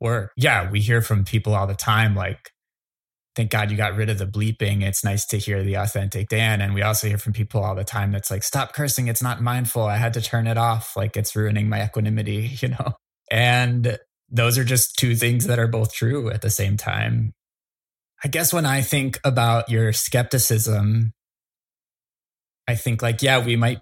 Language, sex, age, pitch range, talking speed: English, male, 20-39, 105-120 Hz, 205 wpm